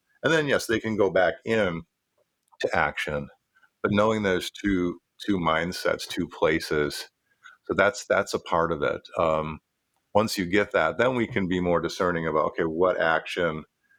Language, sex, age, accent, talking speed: English, male, 50-69, American, 170 wpm